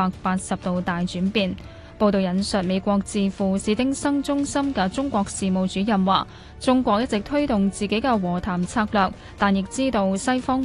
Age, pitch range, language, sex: 10-29, 185-250 Hz, Chinese, female